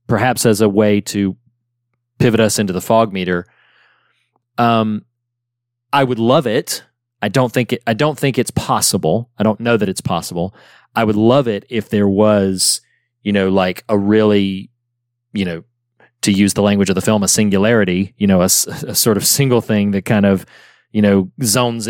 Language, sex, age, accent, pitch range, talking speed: English, male, 30-49, American, 100-120 Hz, 185 wpm